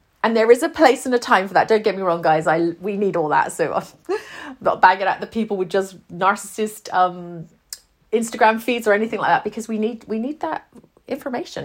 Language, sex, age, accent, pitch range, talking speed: English, female, 40-59, British, 190-255 Hz, 225 wpm